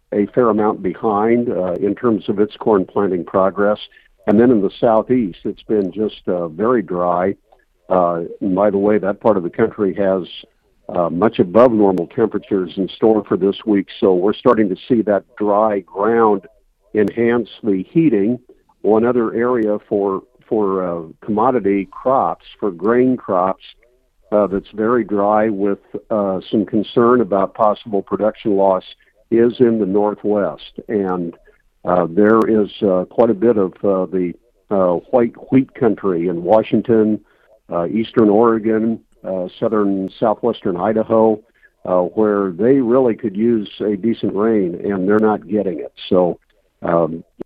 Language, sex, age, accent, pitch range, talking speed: English, male, 50-69, American, 95-115 Hz, 155 wpm